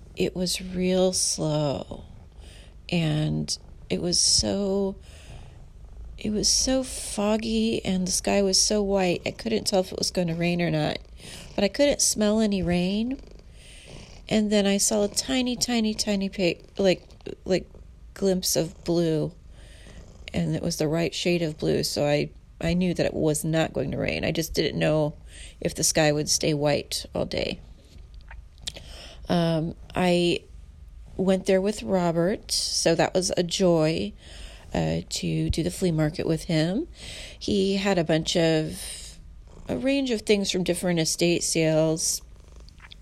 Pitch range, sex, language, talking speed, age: 145-190 Hz, female, English, 155 wpm, 30-49